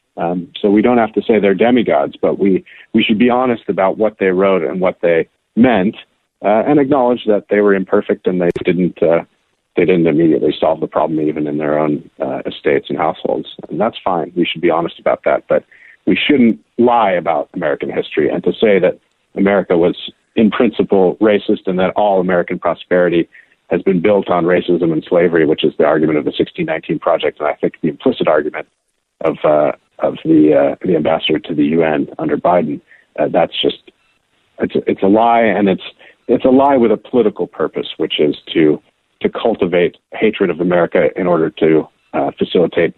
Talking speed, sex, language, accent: 195 wpm, male, English, American